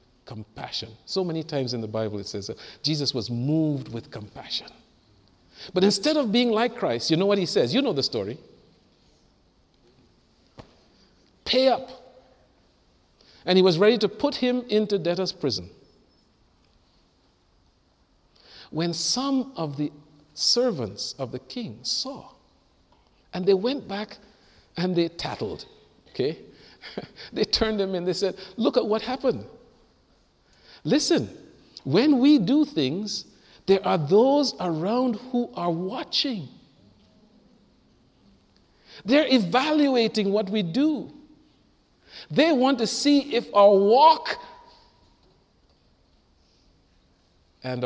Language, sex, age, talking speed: English, male, 50-69, 120 wpm